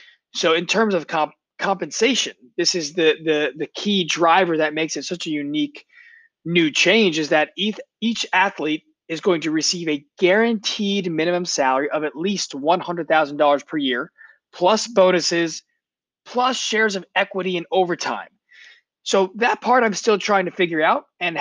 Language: English